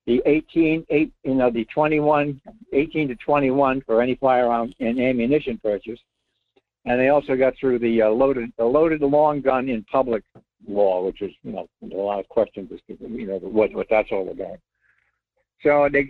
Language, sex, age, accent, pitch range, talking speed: English, male, 60-79, American, 120-160 Hz, 180 wpm